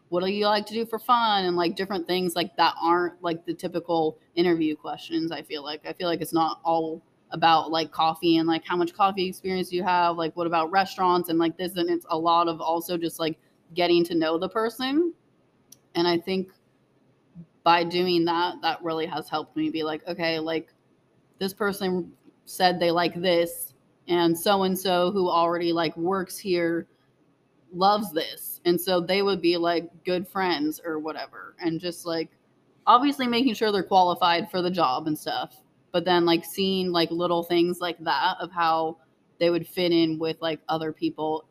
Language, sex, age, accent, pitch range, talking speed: English, female, 20-39, American, 160-180 Hz, 190 wpm